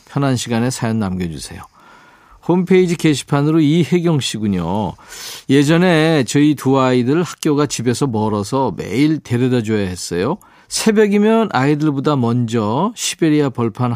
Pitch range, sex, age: 115-160 Hz, male, 40-59